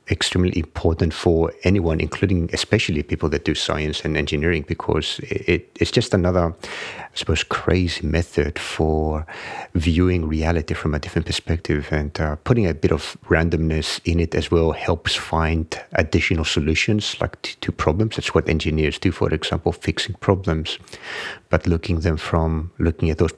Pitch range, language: 80-90 Hz, English